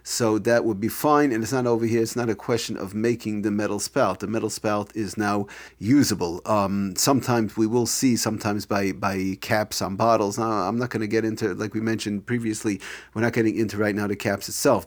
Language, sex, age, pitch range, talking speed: English, male, 40-59, 100-115 Hz, 225 wpm